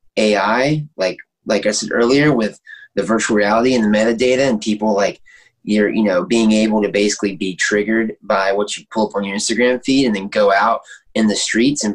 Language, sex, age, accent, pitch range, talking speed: English, male, 20-39, American, 105-135 Hz, 210 wpm